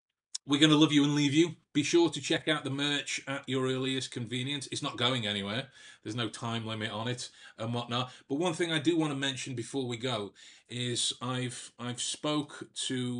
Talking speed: 215 wpm